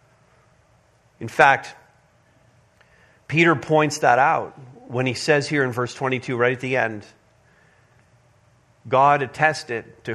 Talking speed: 120 wpm